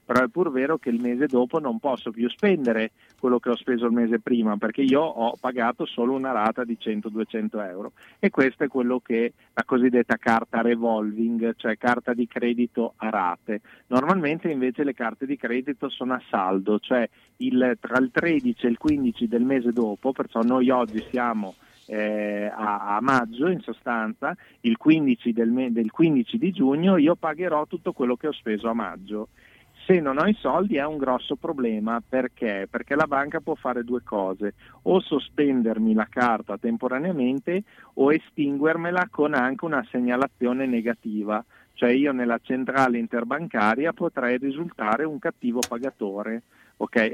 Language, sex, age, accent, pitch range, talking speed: Italian, male, 40-59, native, 115-140 Hz, 160 wpm